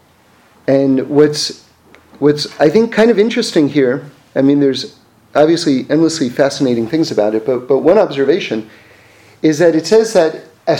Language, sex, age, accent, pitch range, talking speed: English, male, 40-59, American, 145-215 Hz, 155 wpm